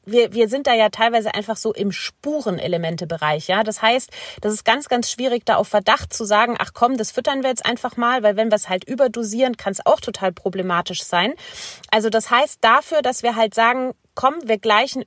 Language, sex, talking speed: German, female, 215 wpm